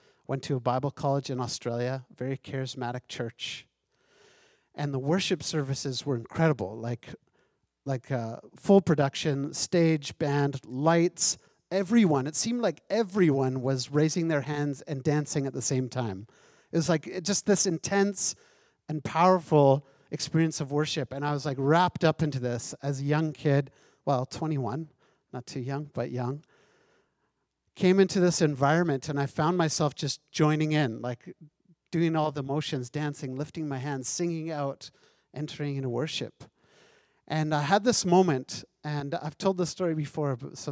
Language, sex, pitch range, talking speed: English, male, 135-170 Hz, 160 wpm